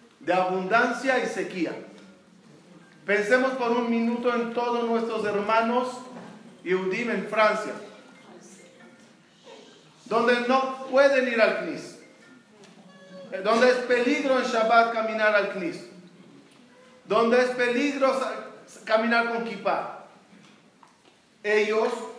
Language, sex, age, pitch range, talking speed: Spanish, male, 40-59, 200-240 Hz, 95 wpm